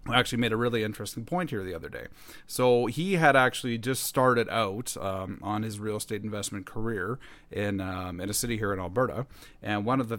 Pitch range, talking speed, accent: 100-125 Hz, 210 wpm, American